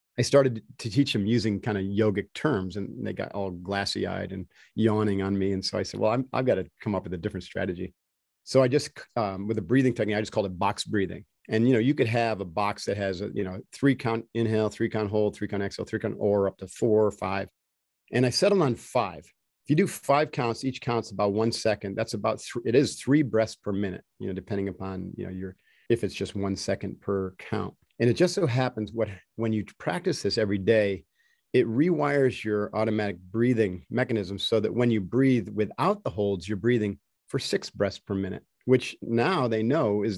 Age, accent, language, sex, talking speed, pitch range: 50-69, American, English, male, 230 wpm, 100-120 Hz